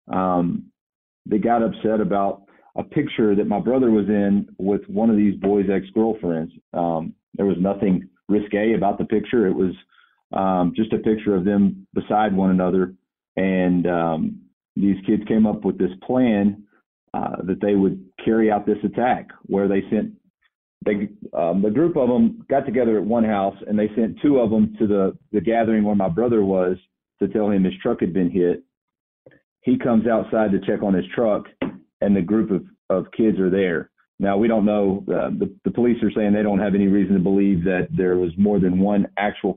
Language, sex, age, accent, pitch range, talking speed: English, male, 40-59, American, 95-110 Hz, 195 wpm